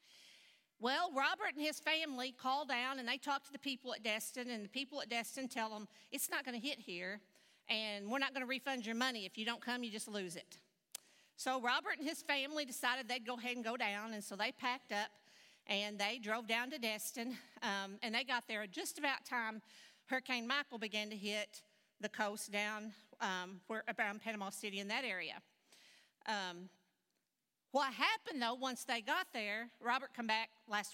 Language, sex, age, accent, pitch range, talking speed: English, female, 50-69, American, 210-265 Hz, 200 wpm